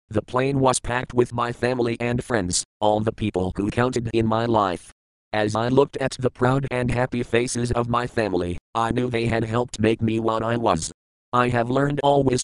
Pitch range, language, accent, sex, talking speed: 100-125 Hz, English, American, male, 205 wpm